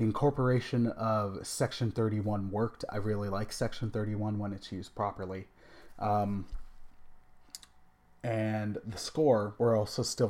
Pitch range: 100-120 Hz